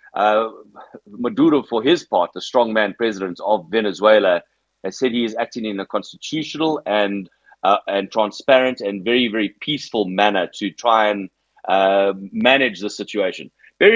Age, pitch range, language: 30-49, 100-130 Hz, English